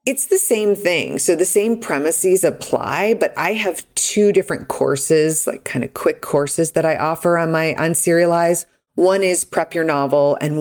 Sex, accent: female, American